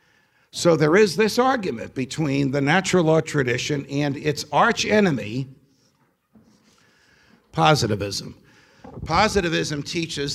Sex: male